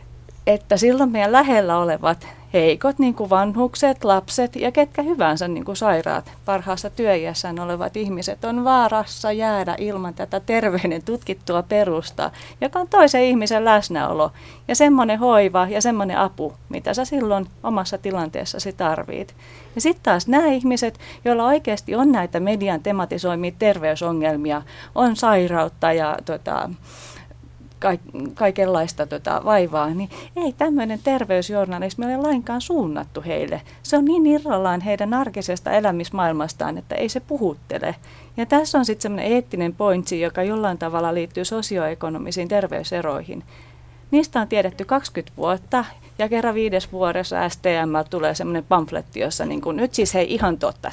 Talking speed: 140 wpm